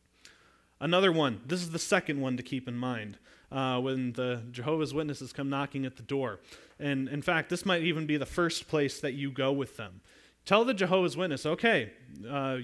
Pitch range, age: 145-225 Hz, 30-49